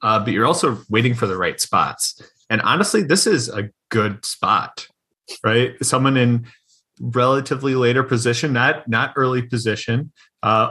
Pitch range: 105-125 Hz